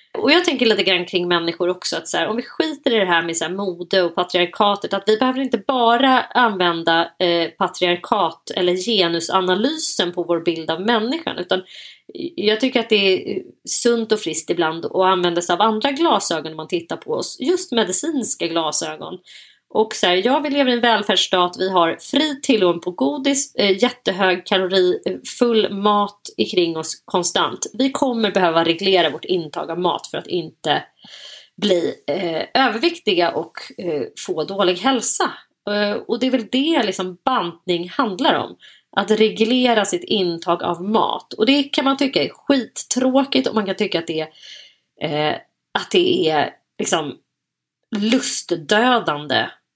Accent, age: native, 30-49